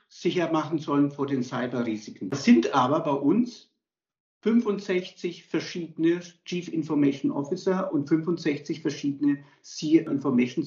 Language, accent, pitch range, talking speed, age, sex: German, German, 150-200 Hz, 120 wpm, 50-69, male